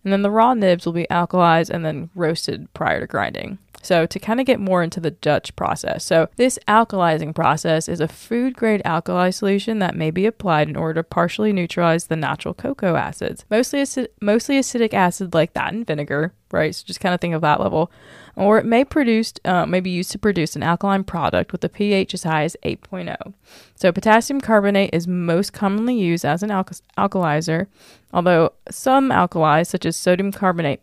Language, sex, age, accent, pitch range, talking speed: English, female, 20-39, American, 165-210 Hz, 200 wpm